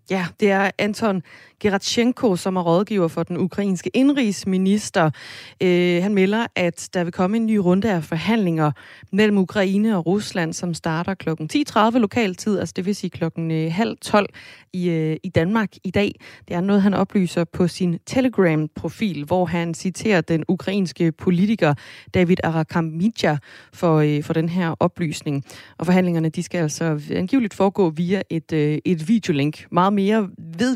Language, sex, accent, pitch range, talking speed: Danish, female, native, 165-200 Hz, 150 wpm